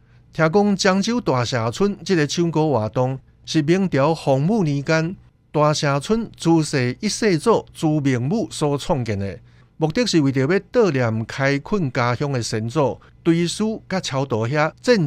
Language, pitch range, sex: Chinese, 125-170 Hz, male